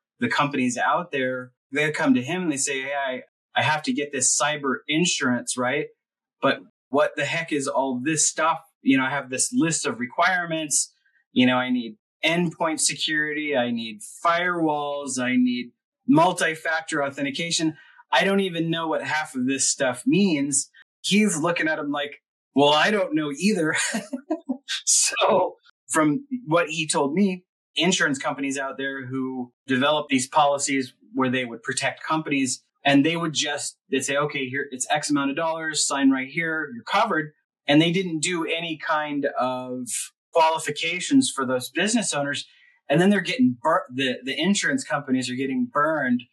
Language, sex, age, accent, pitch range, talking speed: English, male, 30-49, American, 135-175 Hz, 170 wpm